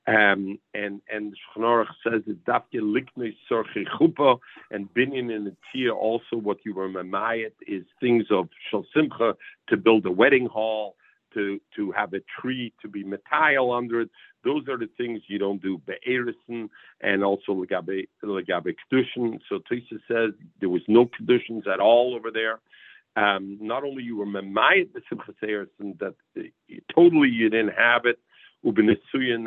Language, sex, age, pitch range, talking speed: English, male, 50-69, 105-125 Hz, 135 wpm